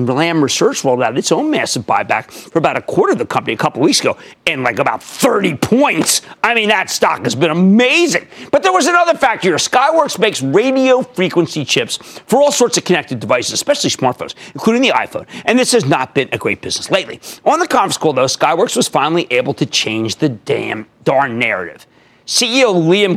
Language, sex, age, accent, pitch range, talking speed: English, male, 40-59, American, 140-215 Hz, 205 wpm